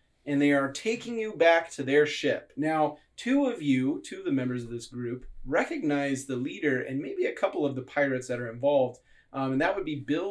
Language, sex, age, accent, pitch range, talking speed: English, male, 30-49, American, 125-150 Hz, 220 wpm